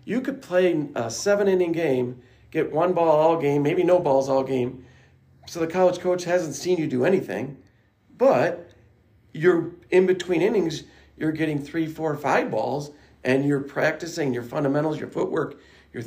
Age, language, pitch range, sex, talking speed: 40-59, English, 130-170 Hz, male, 165 wpm